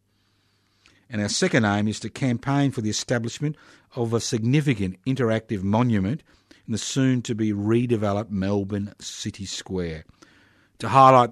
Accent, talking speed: Australian, 120 wpm